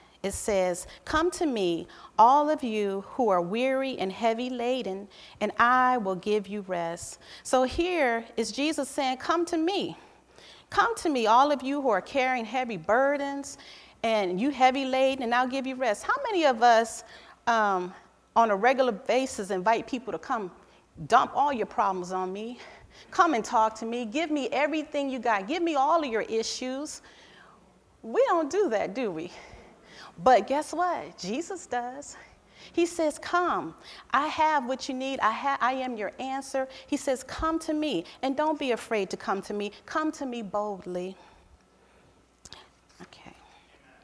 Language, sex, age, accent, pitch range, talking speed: English, female, 40-59, American, 210-290 Hz, 170 wpm